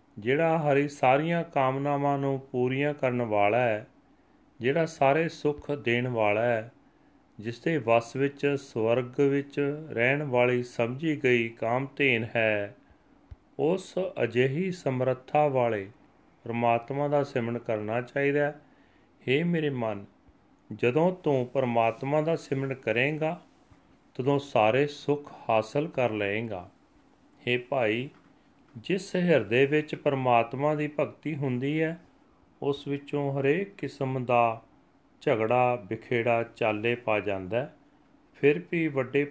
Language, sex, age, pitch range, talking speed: Punjabi, male, 40-59, 115-145 Hz, 115 wpm